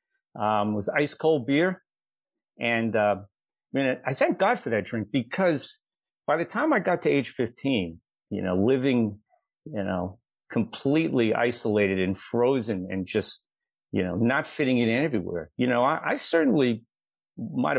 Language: English